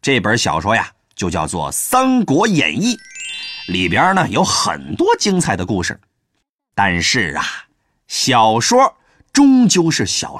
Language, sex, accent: Chinese, male, native